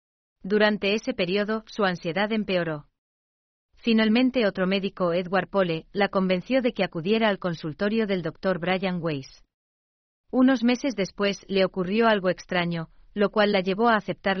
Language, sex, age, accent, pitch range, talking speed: German, female, 40-59, Spanish, 170-210 Hz, 145 wpm